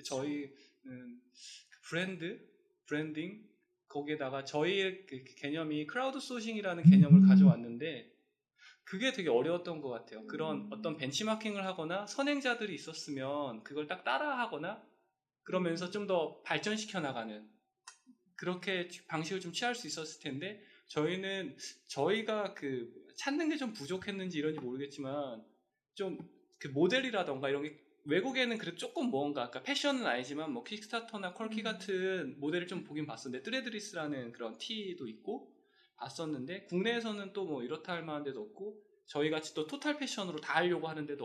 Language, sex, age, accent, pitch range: Korean, male, 20-39, native, 150-230 Hz